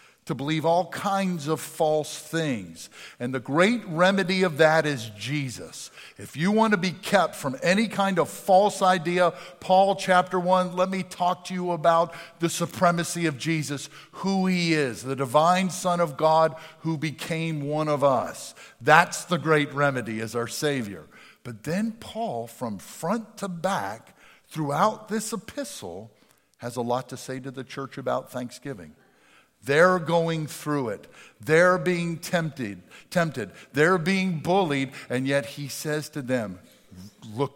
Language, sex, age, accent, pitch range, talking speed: English, male, 50-69, American, 130-180 Hz, 155 wpm